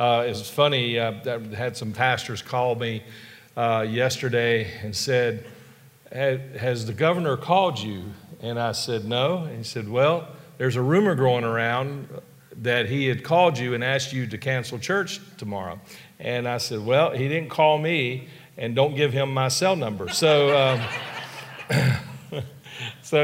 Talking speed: 160 wpm